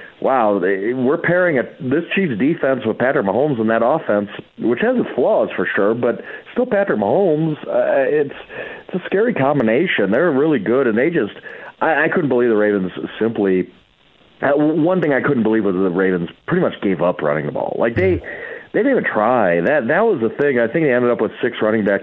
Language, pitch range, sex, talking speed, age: English, 105-150 Hz, male, 215 wpm, 40-59